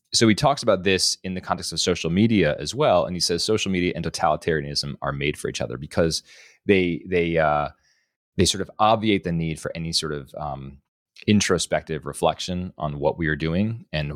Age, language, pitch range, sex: 30-49, English, 75-90 Hz, male